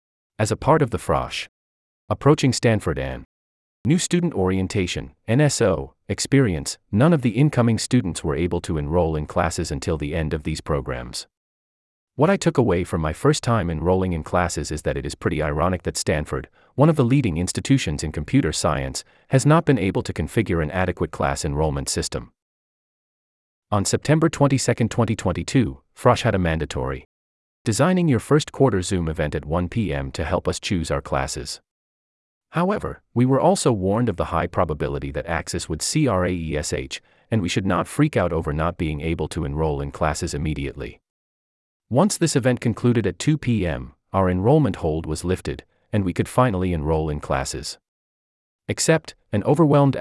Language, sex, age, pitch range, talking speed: English, male, 30-49, 75-120 Hz, 175 wpm